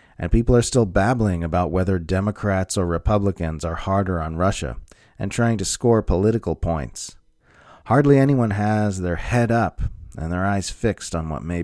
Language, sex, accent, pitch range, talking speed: English, male, American, 85-105 Hz, 170 wpm